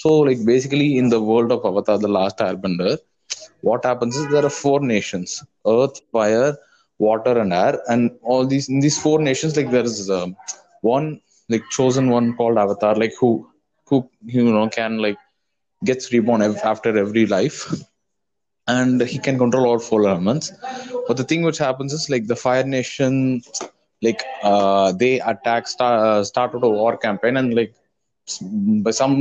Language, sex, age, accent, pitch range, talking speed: Tamil, male, 20-39, native, 110-135 Hz, 175 wpm